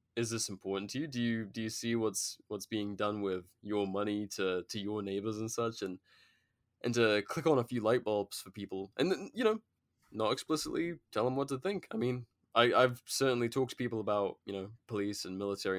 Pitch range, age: 100-125 Hz, 20-39